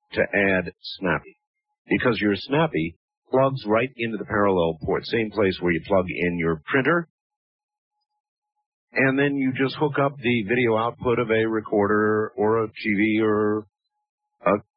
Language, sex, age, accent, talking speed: English, male, 50-69, American, 150 wpm